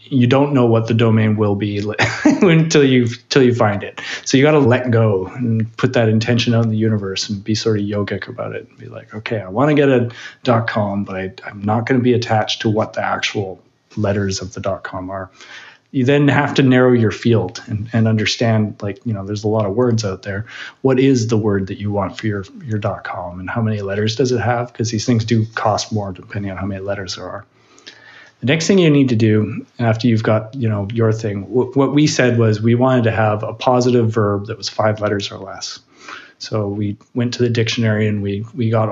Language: English